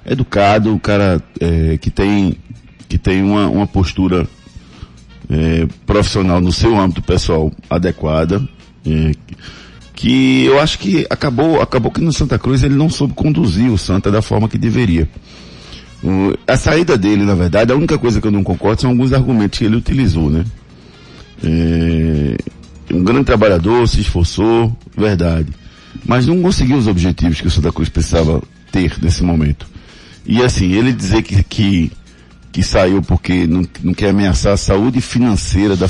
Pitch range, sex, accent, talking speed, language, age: 85-110 Hz, male, Brazilian, 160 wpm, Portuguese, 50-69